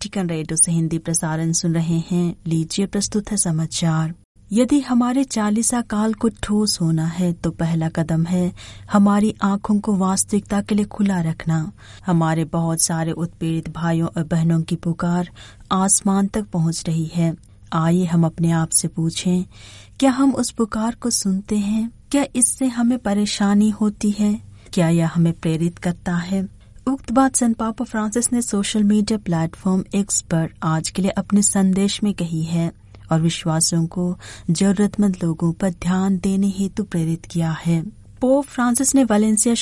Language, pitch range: Hindi, 165-205 Hz